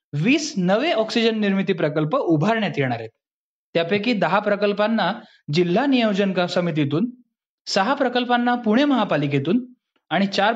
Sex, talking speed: male, 115 wpm